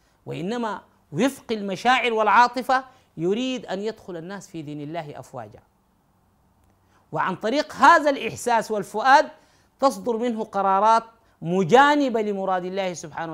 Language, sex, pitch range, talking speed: Arabic, male, 150-230 Hz, 110 wpm